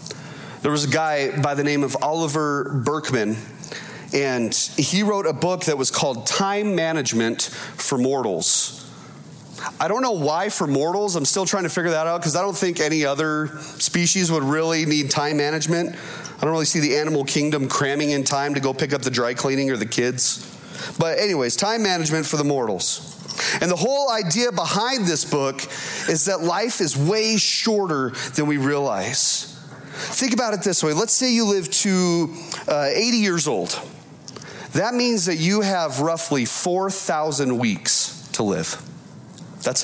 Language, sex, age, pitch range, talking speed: English, male, 30-49, 135-175 Hz, 175 wpm